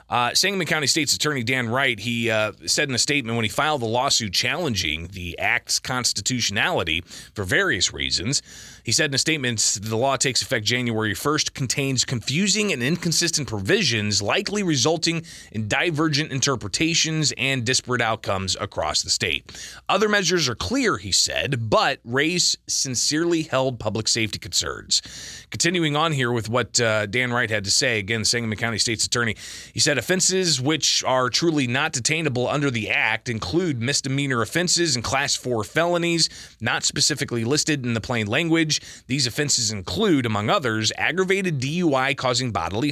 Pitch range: 115-155 Hz